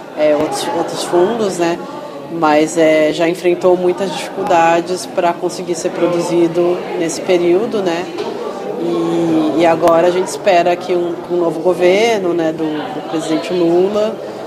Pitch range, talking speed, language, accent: 165-185 Hz, 140 wpm, Portuguese, Brazilian